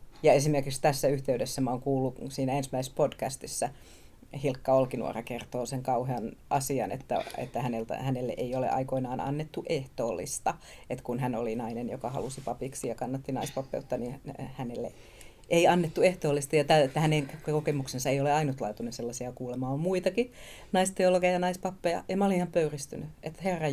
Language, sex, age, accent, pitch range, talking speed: Finnish, female, 30-49, native, 130-155 Hz, 160 wpm